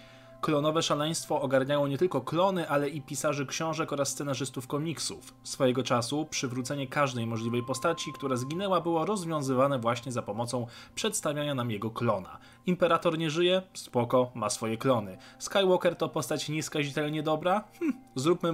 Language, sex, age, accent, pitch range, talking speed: Polish, male, 20-39, native, 125-160 Hz, 140 wpm